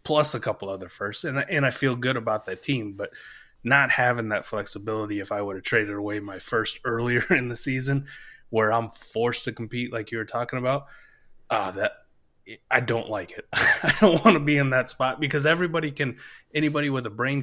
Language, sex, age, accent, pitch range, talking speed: English, male, 20-39, American, 105-130 Hz, 210 wpm